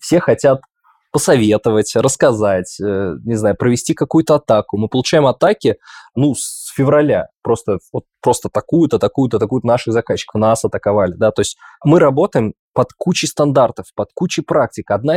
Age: 20-39